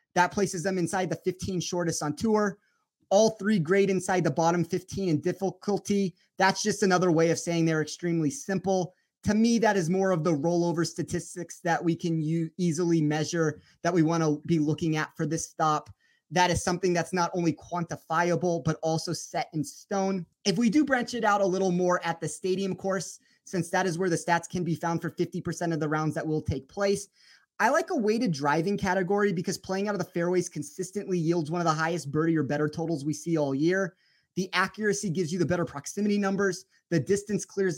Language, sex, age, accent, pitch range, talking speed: English, male, 30-49, American, 165-195 Hz, 210 wpm